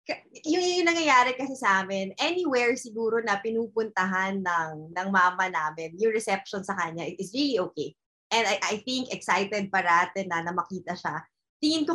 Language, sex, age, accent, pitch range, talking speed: English, female, 20-39, Filipino, 190-240 Hz, 165 wpm